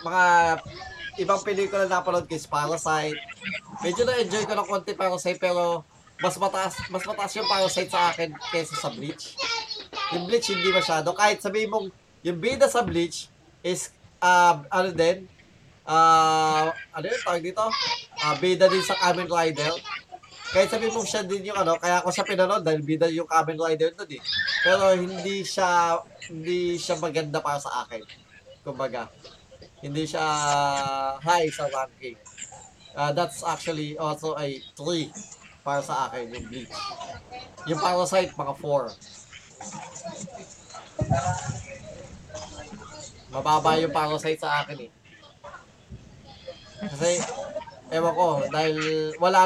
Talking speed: 135 wpm